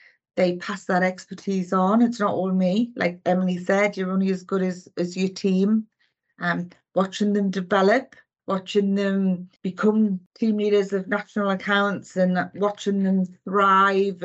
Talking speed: 150 wpm